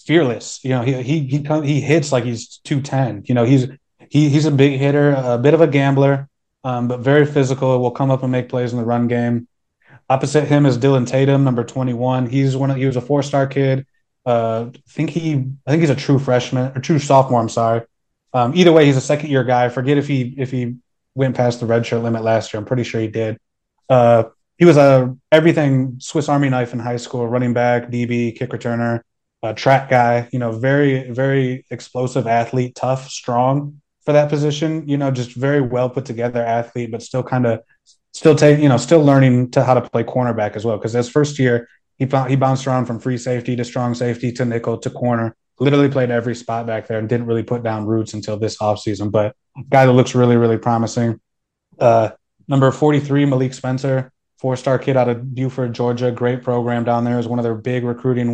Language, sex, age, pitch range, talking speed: English, male, 20-39, 120-135 Hz, 220 wpm